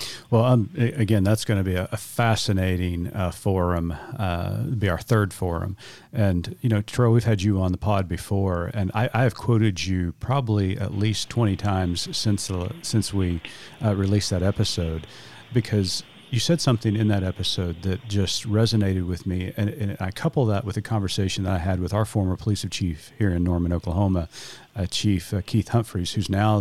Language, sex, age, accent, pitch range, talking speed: English, male, 40-59, American, 95-115 Hz, 195 wpm